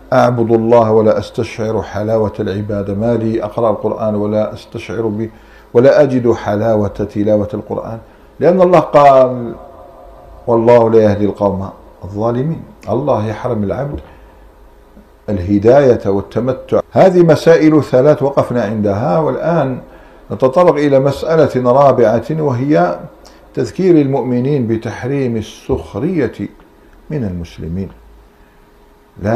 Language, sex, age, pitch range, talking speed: Arabic, male, 50-69, 105-140 Hz, 100 wpm